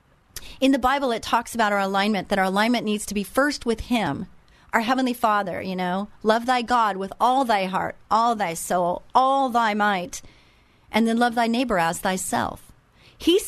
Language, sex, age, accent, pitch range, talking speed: English, female, 40-59, American, 205-270 Hz, 190 wpm